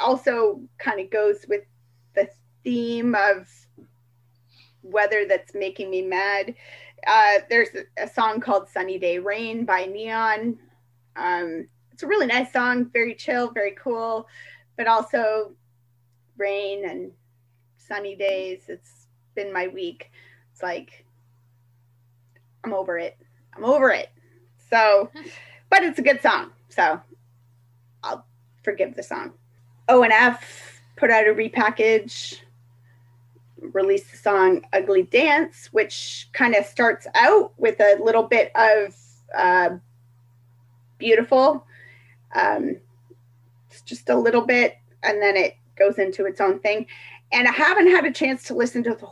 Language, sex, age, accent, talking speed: English, female, 20-39, American, 130 wpm